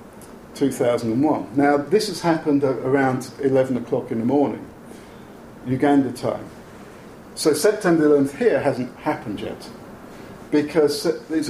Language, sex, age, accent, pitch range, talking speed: English, male, 50-69, British, 125-150 Hz, 115 wpm